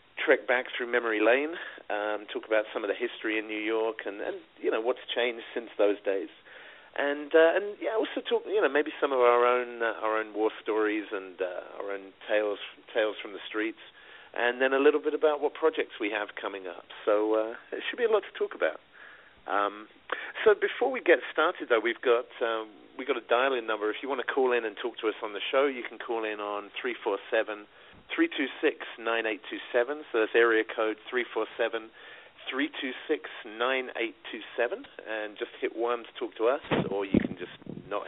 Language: English